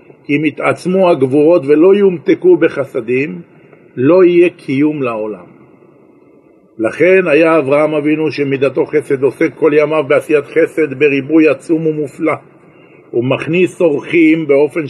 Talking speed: 115 wpm